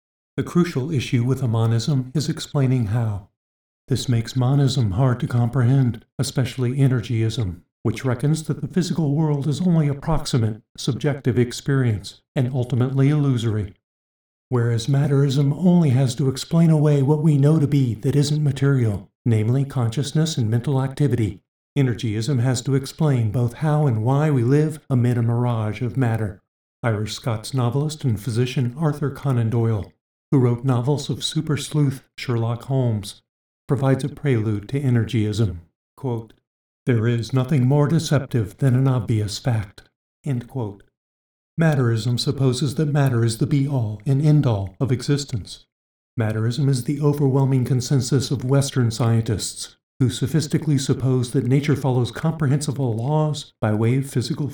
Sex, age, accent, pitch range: male, 50-69, American, 115-145 Hz